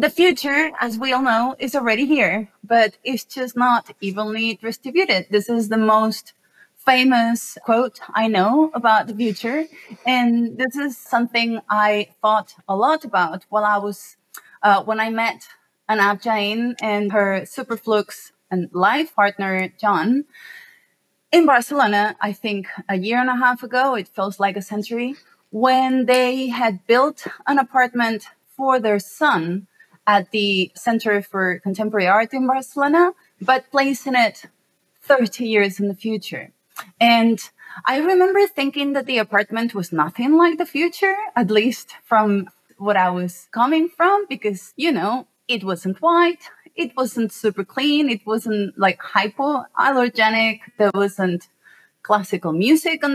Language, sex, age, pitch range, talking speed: English, female, 30-49, 205-260 Hz, 145 wpm